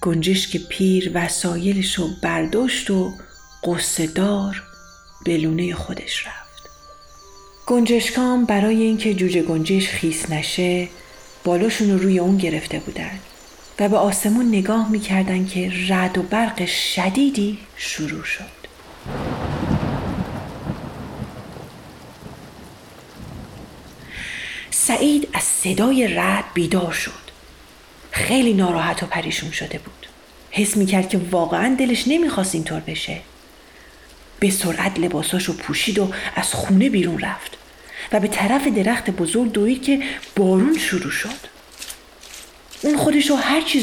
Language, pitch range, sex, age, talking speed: Persian, 175-230 Hz, female, 40-59, 110 wpm